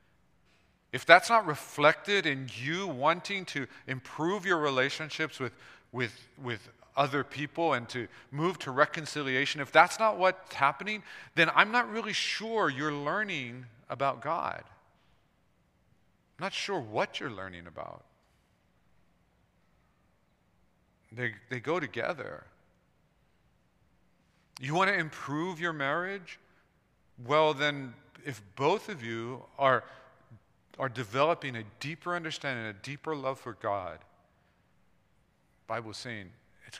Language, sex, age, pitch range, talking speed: English, male, 40-59, 105-150 Hz, 120 wpm